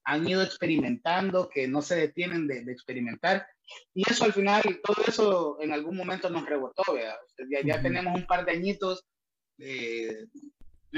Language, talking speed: Spanish, 160 wpm